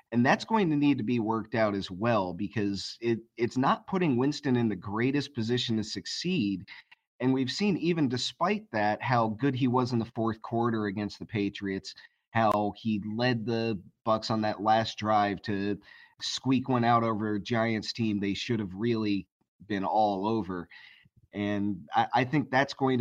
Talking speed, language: 185 wpm, English